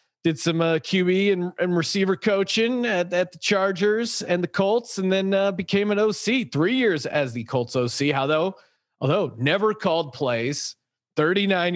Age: 30-49